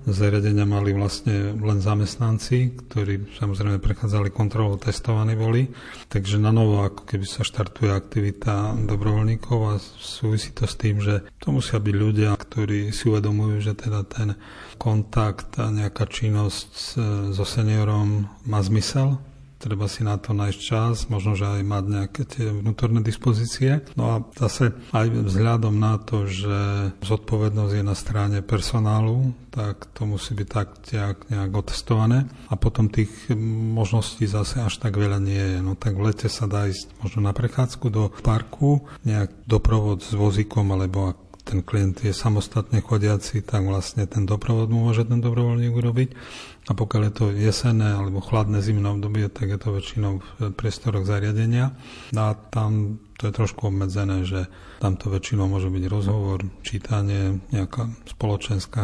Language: Slovak